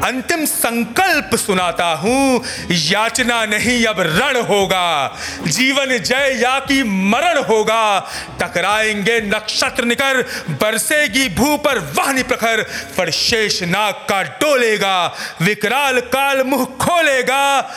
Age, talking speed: 30-49, 105 wpm